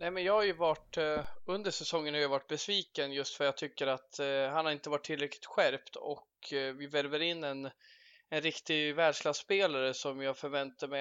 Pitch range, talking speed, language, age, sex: 140-165 Hz, 205 wpm, Swedish, 20-39, male